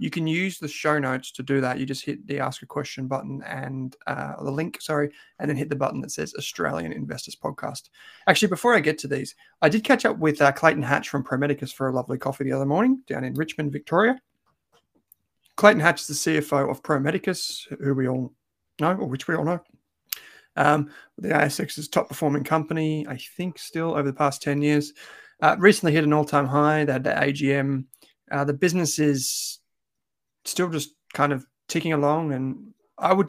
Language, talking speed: English, 200 wpm